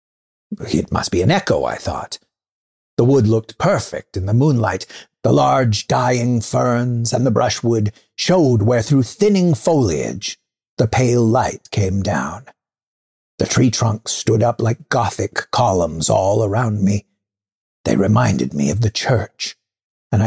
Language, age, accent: English, 60-79, American